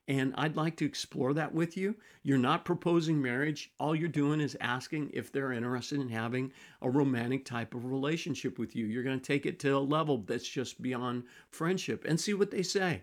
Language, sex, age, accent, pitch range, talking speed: English, male, 50-69, American, 130-175 Hz, 205 wpm